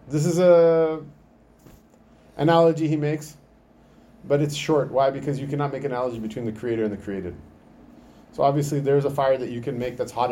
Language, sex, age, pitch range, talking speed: English, male, 30-49, 100-125 Hz, 190 wpm